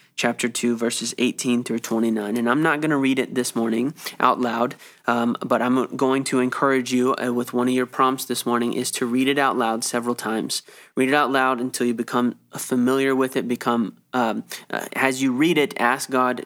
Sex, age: male, 20-39